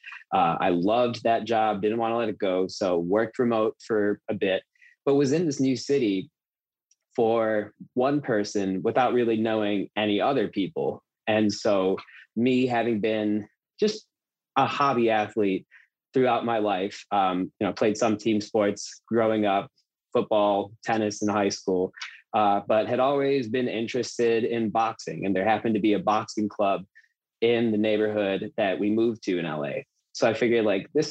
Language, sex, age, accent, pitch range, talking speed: English, male, 20-39, American, 100-115 Hz, 170 wpm